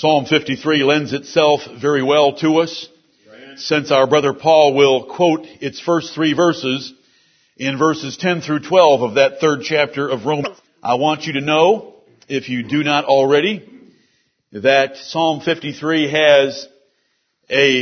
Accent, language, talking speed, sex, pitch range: American, English, 145 wpm, male, 140-170 Hz